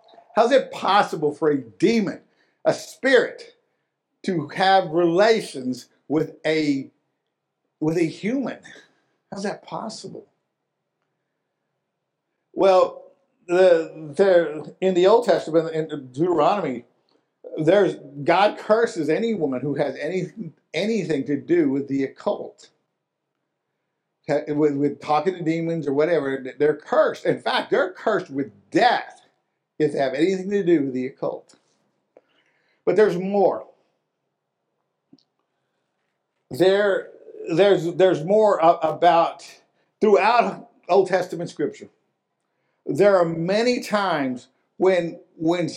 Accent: American